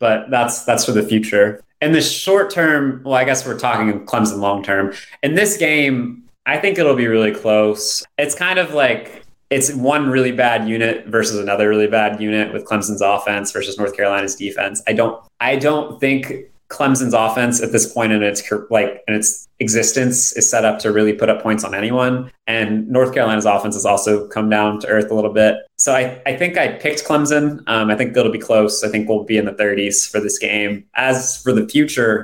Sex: male